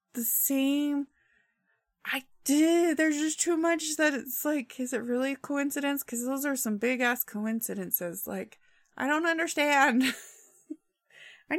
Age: 20-39